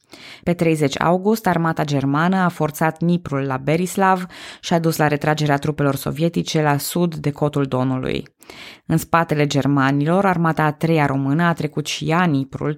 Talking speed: 160 wpm